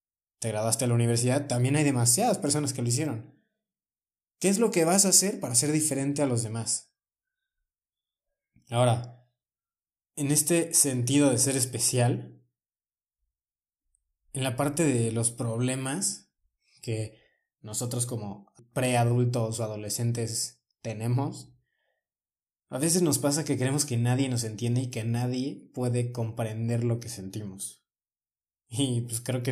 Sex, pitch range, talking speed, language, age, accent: male, 120-145 Hz, 135 wpm, Spanish, 20-39, Mexican